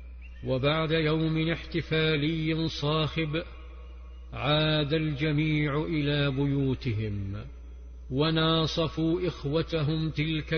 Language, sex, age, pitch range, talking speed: English, male, 50-69, 100-160 Hz, 60 wpm